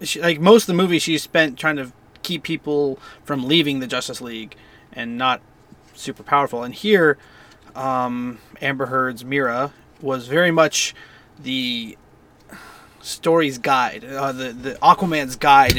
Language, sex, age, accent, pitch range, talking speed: English, male, 30-49, American, 120-150 Hz, 145 wpm